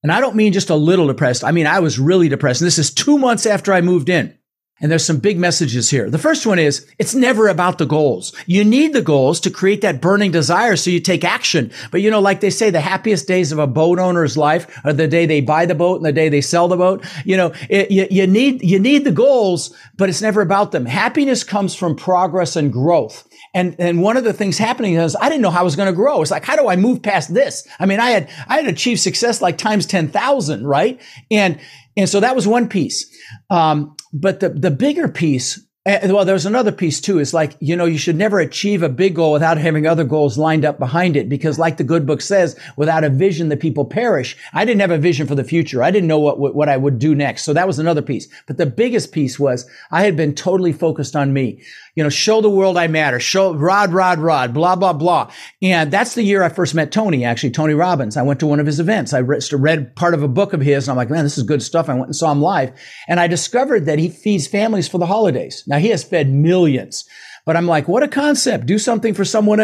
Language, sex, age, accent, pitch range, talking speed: English, male, 50-69, American, 150-200 Hz, 255 wpm